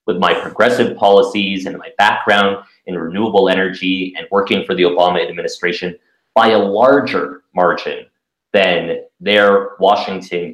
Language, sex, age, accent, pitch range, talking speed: English, male, 30-49, American, 100-145 Hz, 130 wpm